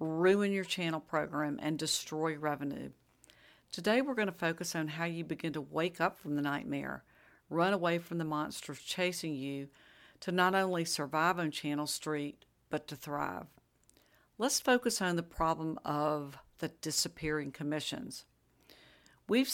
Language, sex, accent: English, female, American